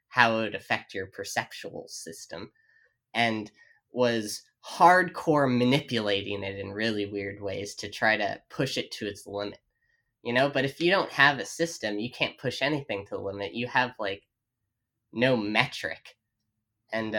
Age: 10-29